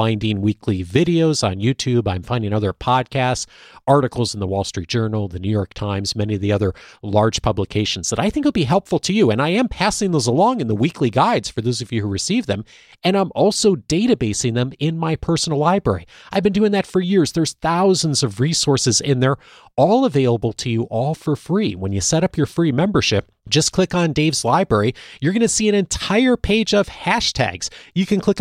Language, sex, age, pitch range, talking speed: English, male, 40-59, 110-175 Hz, 220 wpm